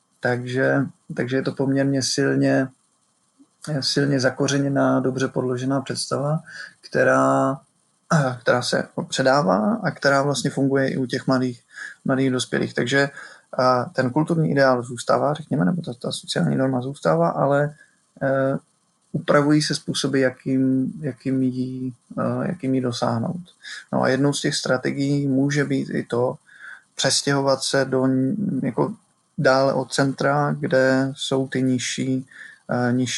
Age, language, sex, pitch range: 20-39, Czech, male, 125-140 Hz